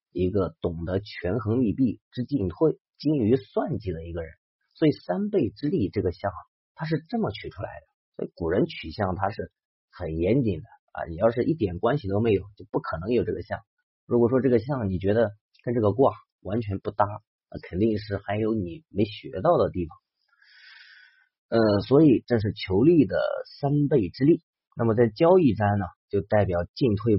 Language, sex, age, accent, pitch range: Chinese, male, 30-49, native, 95-130 Hz